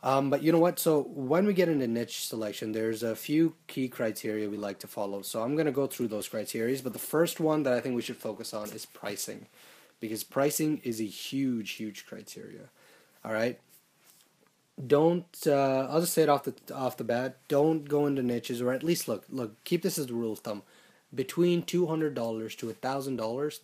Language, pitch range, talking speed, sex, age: English, 115-145 Hz, 210 wpm, male, 30-49